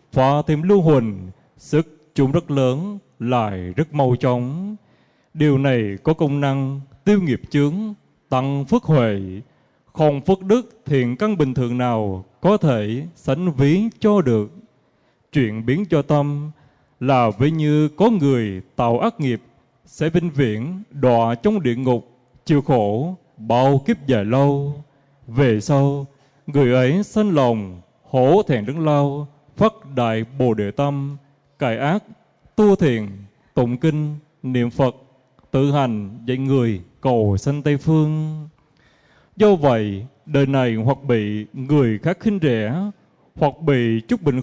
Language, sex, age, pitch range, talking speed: Vietnamese, male, 20-39, 125-155 Hz, 145 wpm